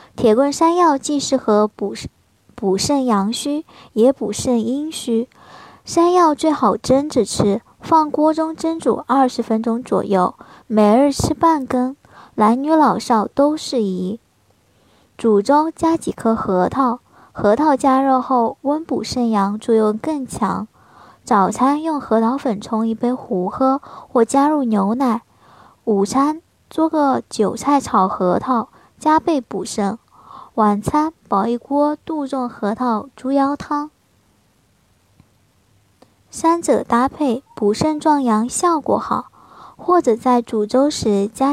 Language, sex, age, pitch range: Chinese, male, 10-29, 220-290 Hz